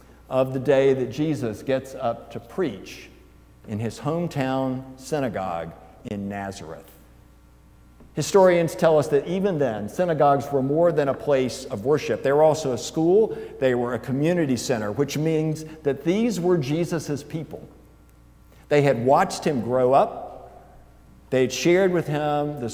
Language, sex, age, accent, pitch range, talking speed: English, male, 60-79, American, 105-150 Hz, 150 wpm